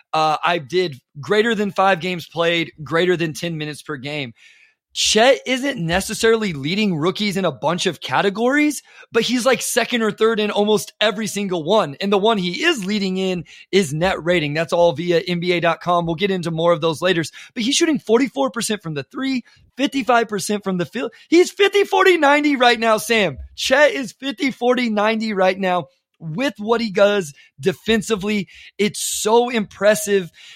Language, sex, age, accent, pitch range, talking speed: English, male, 20-39, American, 180-230 Hz, 175 wpm